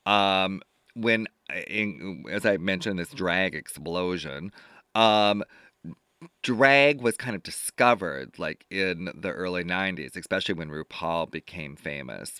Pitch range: 85-105 Hz